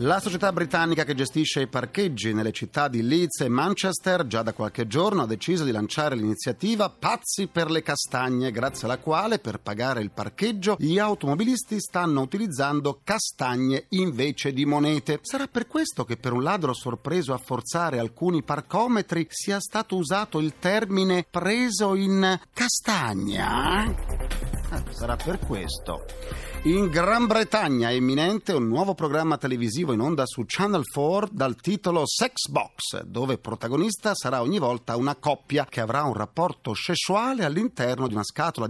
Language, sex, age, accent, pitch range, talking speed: Italian, male, 40-59, native, 125-195 Hz, 150 wpm